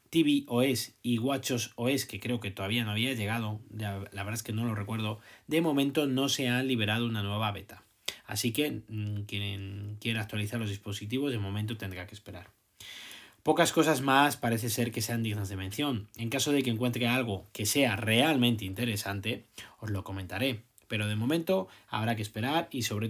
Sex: male